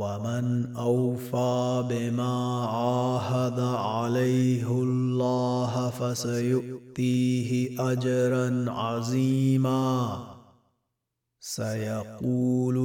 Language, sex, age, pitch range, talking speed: Arabic, male, 30-49, 120-130 Hz, 45 wpm